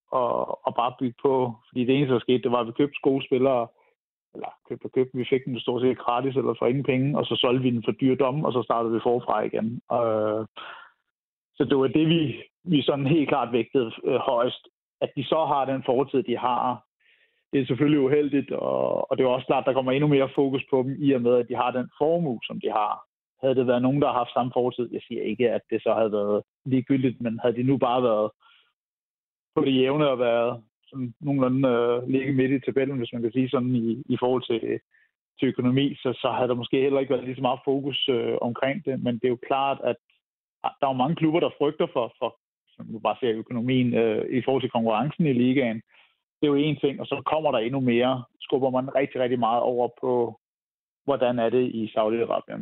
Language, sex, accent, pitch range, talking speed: Danish, male, native, 120-135 Hz, 235 wpm